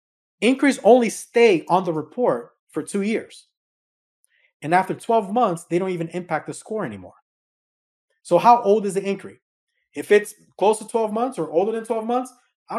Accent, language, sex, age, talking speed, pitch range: American, English, male, 30-49, 180 wpm, 160-215 Hz